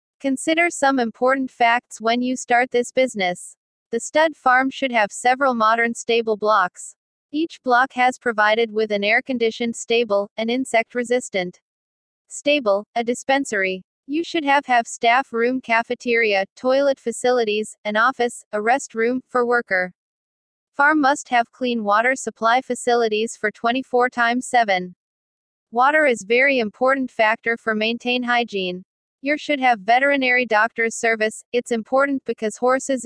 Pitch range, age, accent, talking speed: 220-255 Hz, 40-59, American, 140 wpm